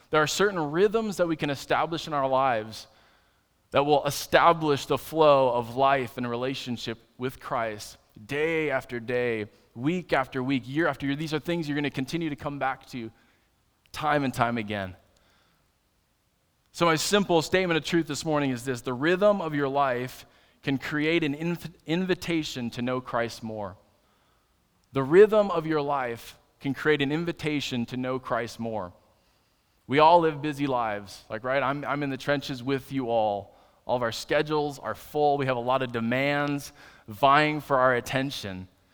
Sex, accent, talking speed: male, American, 175 wpm